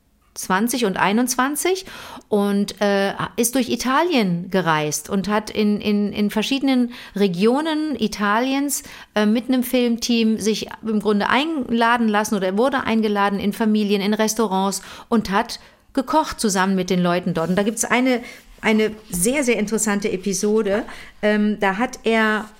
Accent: German